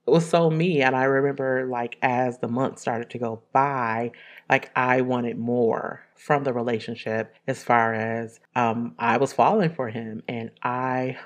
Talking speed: 170 wpm